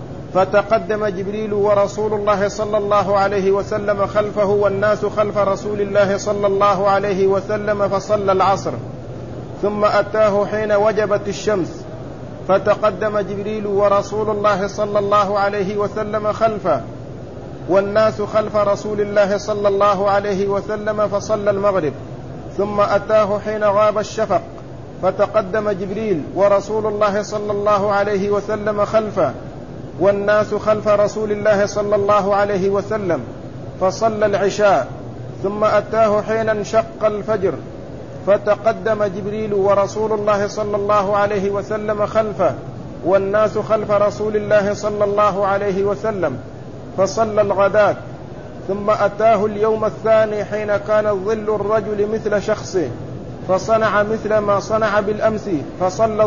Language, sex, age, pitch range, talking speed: Arabic, male, 50-69, 200-215 Hz, 115 wpm